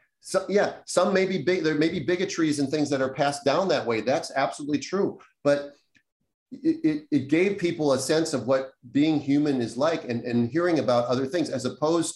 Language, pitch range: English, 130-160 Hz